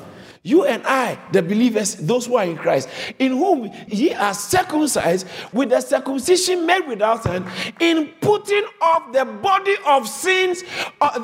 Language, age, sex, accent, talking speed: English, 50-69, male, Nigerian, 155 wpm